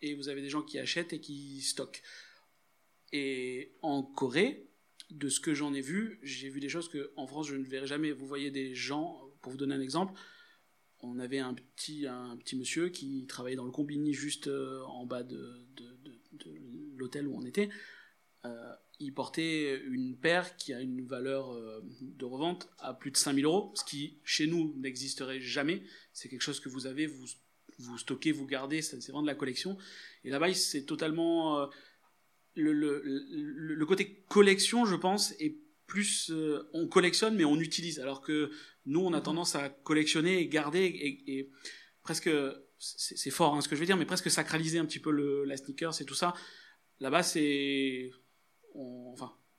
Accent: French